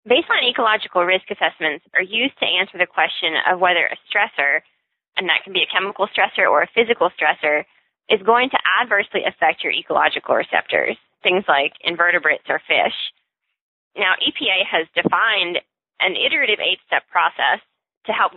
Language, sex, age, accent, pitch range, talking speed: English, female, 20-39, American, 170-210 Hz, 155 wpm